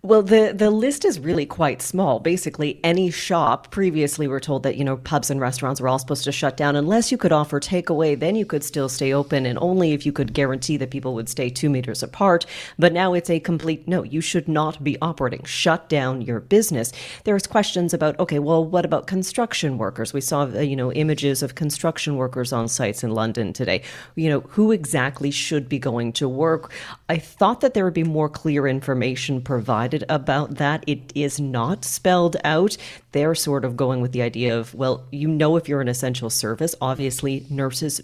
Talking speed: 205 wpm